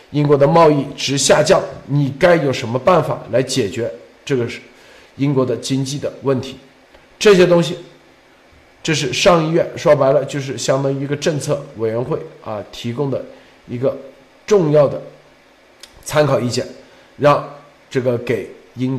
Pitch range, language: 130-155 Hz, Chinese